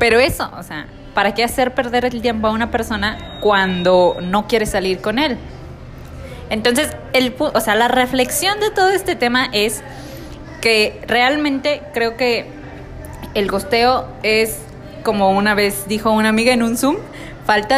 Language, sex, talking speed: Spanish, female, 160 wpm